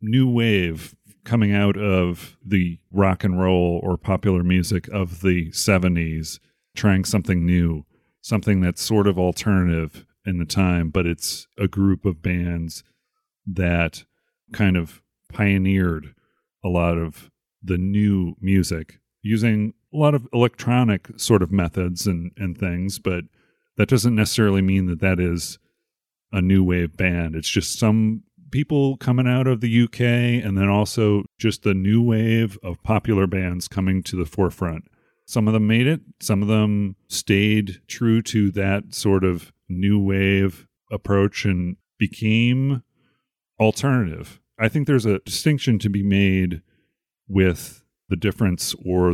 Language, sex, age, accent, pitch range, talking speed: English, male, 40-59, American, 90-110 Hz, 145 wpm